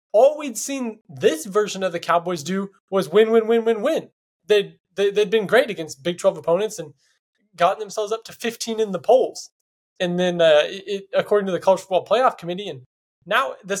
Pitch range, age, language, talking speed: 175-230 Hz, 20-39, English, 200 wpm